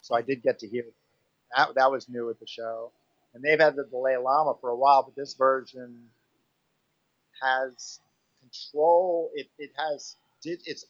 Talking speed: 175 wpm